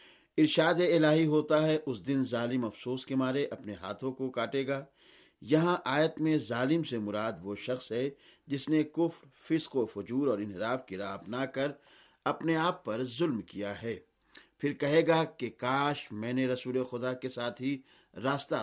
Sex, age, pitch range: male, 50-69, 120-155 Hz